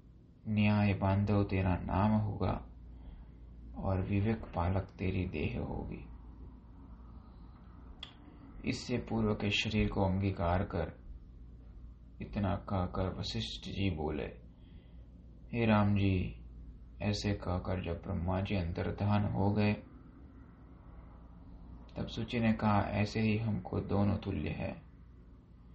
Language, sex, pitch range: Hindi, male, 80-105 Hz